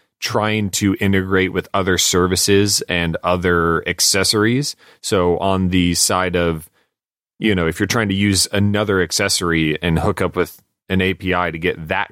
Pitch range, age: 85-105 Hz, 30-49